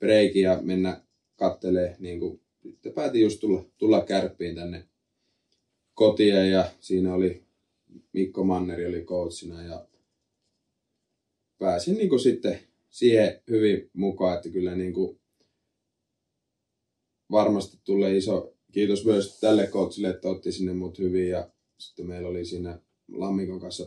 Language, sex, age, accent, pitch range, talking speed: Finnish, male, 20-39, native, 90-100 Hz, 120 wpm